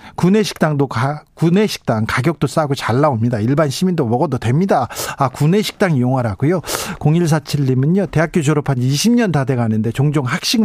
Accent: native